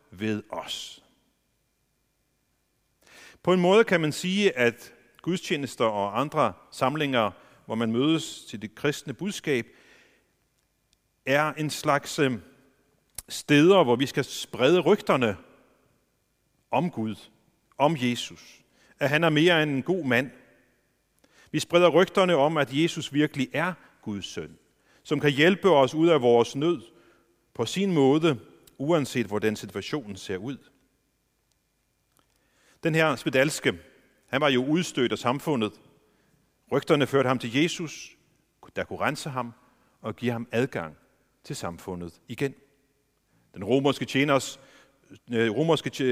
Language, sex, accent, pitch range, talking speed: Danish, male, native, 120-160 Hz, 120 wpm